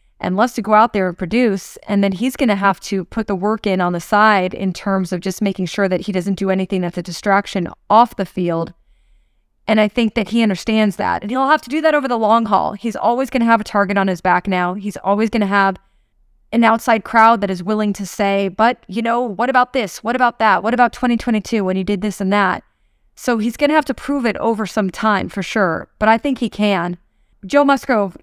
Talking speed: 250 wpm